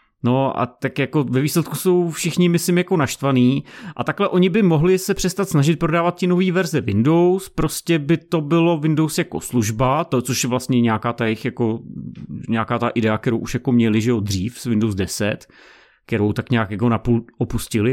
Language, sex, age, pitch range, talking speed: Czech, male, 30-49, 115-150 Hz, 195 wpm